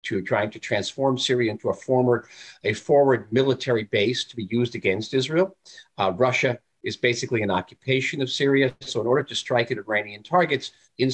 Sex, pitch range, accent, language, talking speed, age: male, 110-135 Hz, American, English, 185 wpm, 50-69